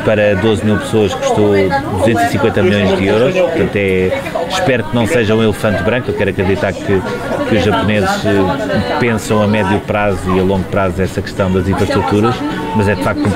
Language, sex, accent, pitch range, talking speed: Portuguese, male, Portuguese, 105-120 Hz, 190 wpm